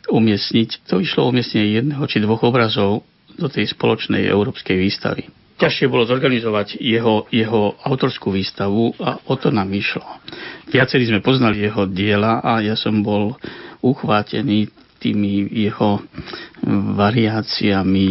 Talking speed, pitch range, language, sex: 125 wpm, 100-115 Hz, Slovak, male